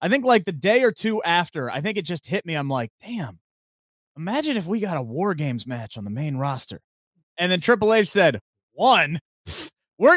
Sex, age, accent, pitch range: male, 30-49, American, 145-210 Hz